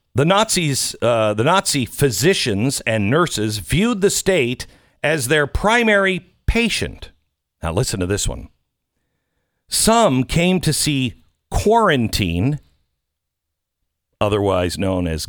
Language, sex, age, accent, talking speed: English, male, 50-69, American, 110 wpm